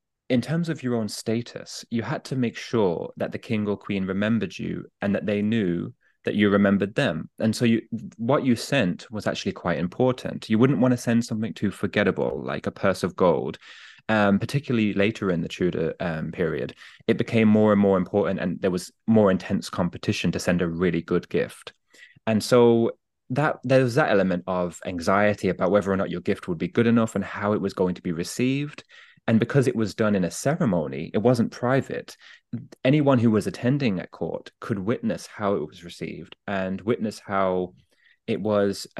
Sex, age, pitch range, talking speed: male, 20-39, 95-120 Hz, 200 wpm